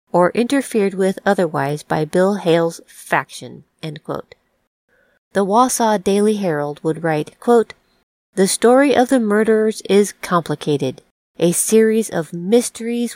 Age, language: 40-59, English